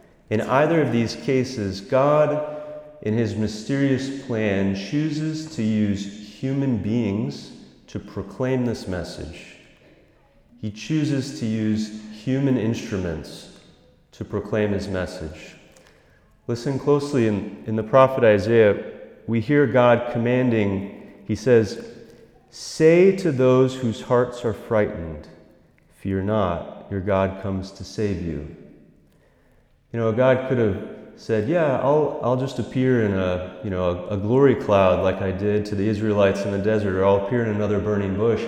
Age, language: 30-49, English